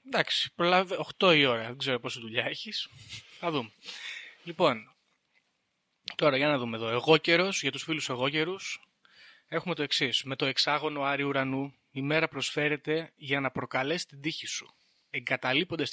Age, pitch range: 20-39, 130-170 Hz